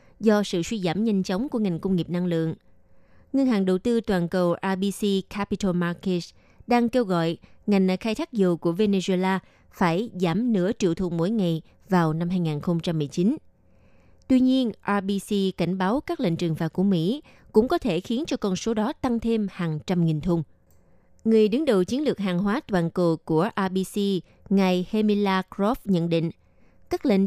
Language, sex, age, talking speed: Vietnamese, female, 20-39, 185 wpm